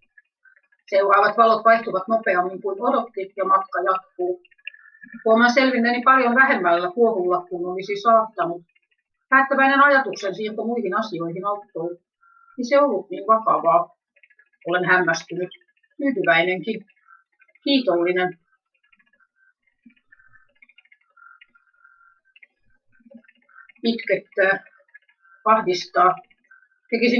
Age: 30-49